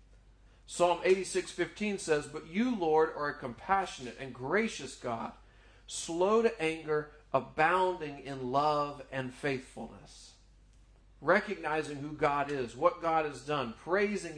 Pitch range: 115-165 Hz